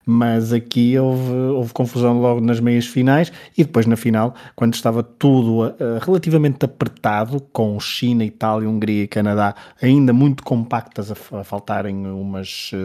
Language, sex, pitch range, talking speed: Portuguese, male, 110-130 Hz, 145 wpm